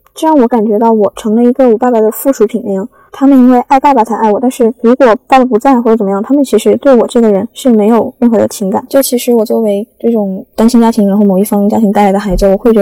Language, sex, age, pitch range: Chinese, female, 10-29, 195-220 Hz